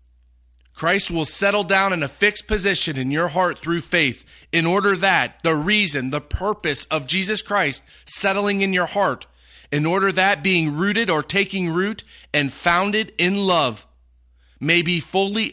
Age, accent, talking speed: 30-49, American, 160 wpm